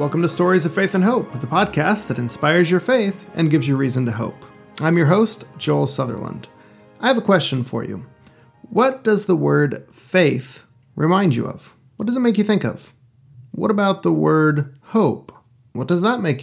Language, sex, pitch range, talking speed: English, male, 130-180 Hz, 195 wpm